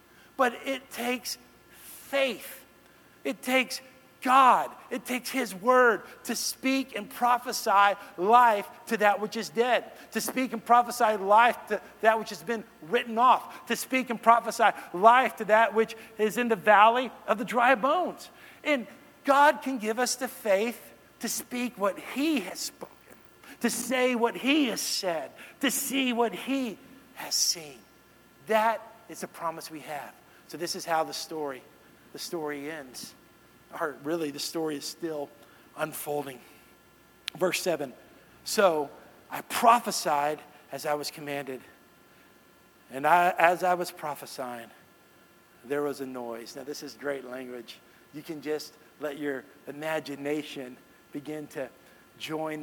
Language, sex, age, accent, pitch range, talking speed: English, male, 50-69, American, 150-240 Hz, 145 wpm